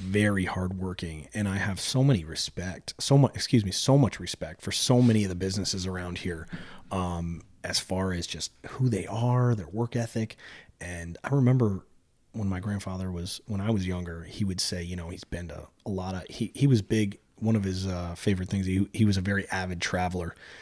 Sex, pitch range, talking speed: male, 90-110 Hz, 210 wpm